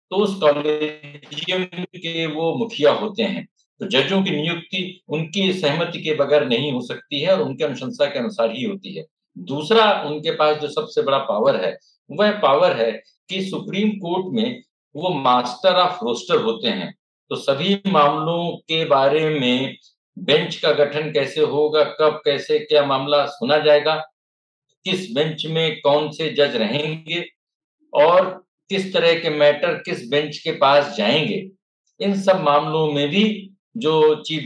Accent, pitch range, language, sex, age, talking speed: native, 150-195 Hz, Hindi, male, 60-79, 155 wpm